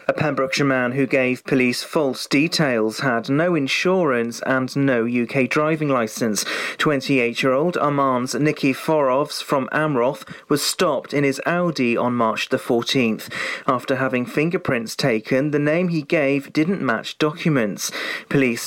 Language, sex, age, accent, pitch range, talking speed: English, male, 40-59, British, 130-155 Hz, 140 wpm